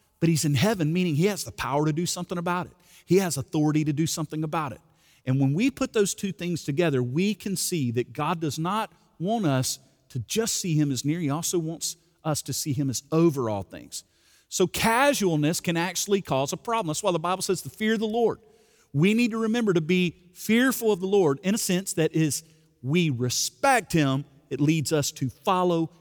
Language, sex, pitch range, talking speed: English, male, 140-185 Hz, 220 wpm